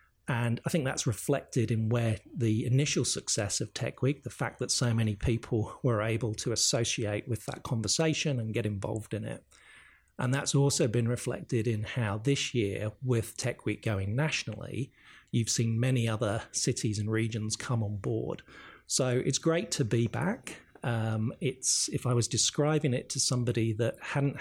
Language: English